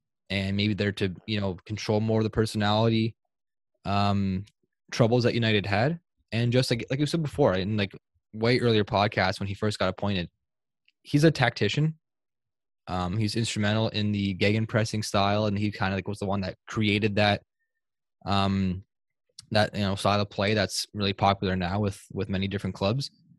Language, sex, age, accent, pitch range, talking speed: English, male, 20-39, American, 95-110 Hz, 180 wpm